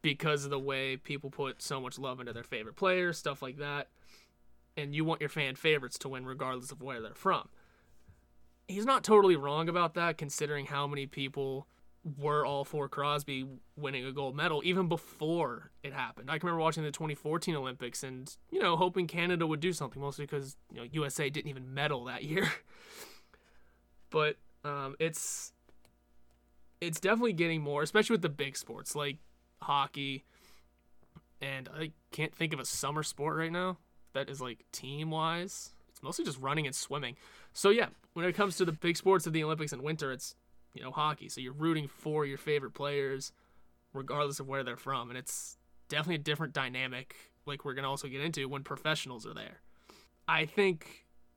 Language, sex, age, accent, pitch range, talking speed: English, male, 20-39, American, 130-160 Hz, 185 wpm